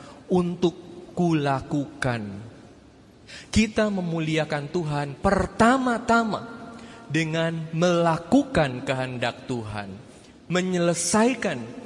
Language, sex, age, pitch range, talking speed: Indonesian, male, 20-39, 140-205 Hz, 55 wpm